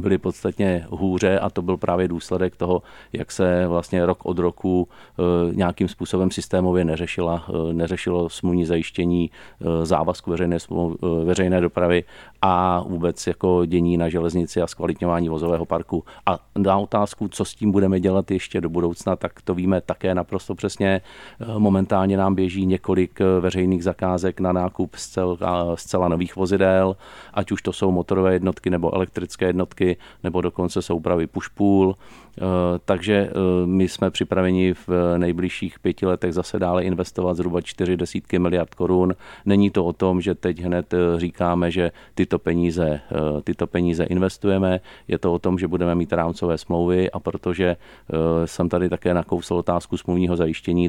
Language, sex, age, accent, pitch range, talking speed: Czech, male, 40-59, native, 85-95 Hz, 145 wpm